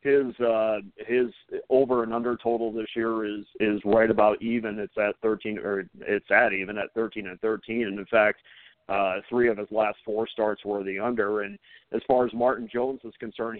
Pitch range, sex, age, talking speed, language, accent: 110-130 Hz, male, 40-59, 205 wpm, English, American